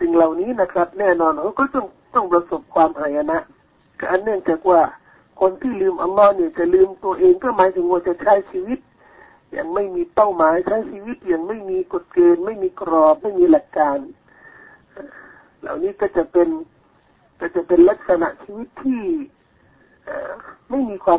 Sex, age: male, 60-79